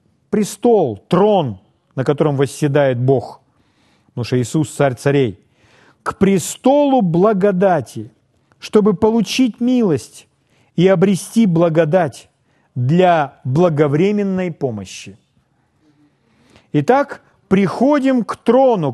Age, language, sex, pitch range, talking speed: 40-59, Russian, male, 140-215 Hz, 85 wpm